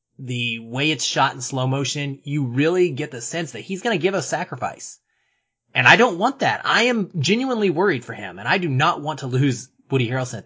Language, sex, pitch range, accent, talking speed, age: English, male, 120-160 Hz, American, 230 wpm, 30-49